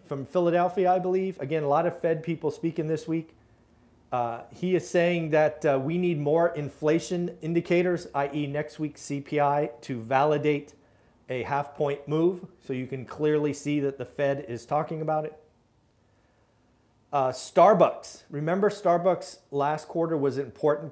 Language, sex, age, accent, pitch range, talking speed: English, male, 40-59, American, 135-165 Hz, 150 wpm